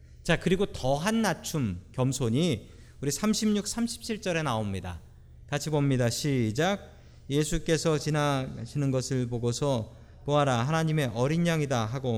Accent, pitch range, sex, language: native, 105-175 Hz, male, Korean